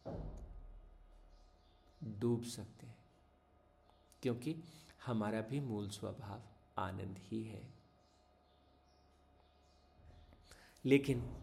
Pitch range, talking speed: 100-125 Hz, 65 wpm